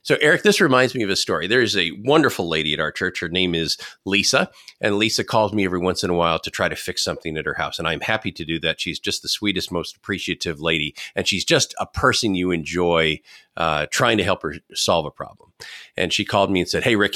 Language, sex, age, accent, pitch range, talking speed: English, male, 40-59, American, 90-130 Hz, 255 wpm